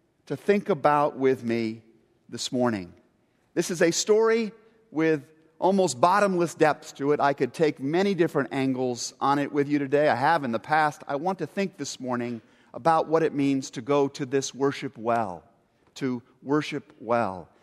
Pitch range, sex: 120-165 Hz, male